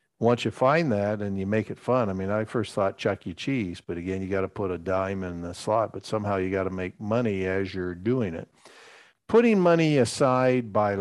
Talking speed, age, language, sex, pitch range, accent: 235 wpm, 50-69, English, male, 100-120 Hz, American